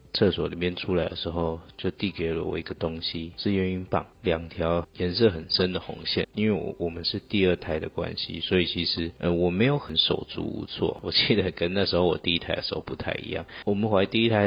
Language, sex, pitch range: Chinese, male, 85-100 Hz